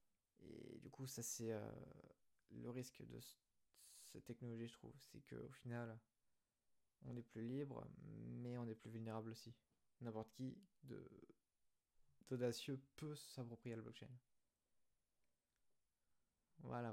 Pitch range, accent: 110-135 Hz, French